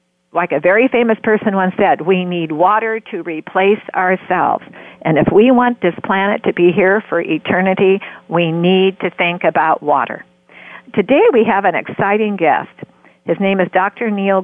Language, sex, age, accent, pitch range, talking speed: English, female, 50-69, American, 165-210 Hz, 170 wpm